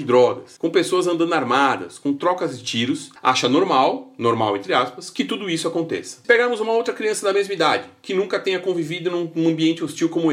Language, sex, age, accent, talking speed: Portuguese, male, 40-59, Brazilian, 200 wpm